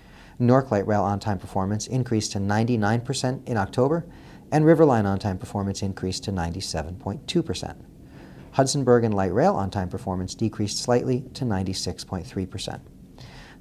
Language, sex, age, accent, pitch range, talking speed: English, male, 40-59, American, 95-125 Hz, 120 wpm